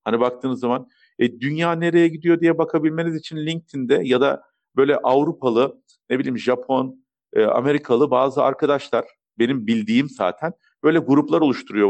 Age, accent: 50-69, native